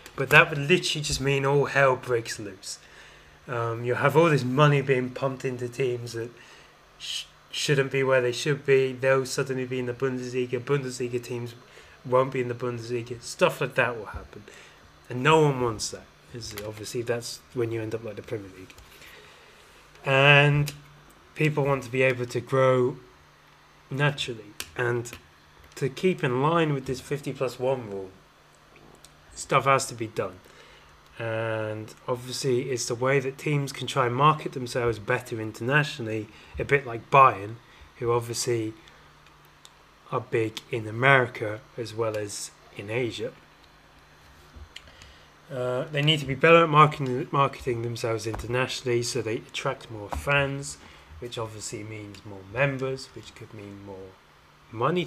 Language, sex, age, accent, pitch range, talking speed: English, male, 20-39, British, 115-135 Hz, 155 wpm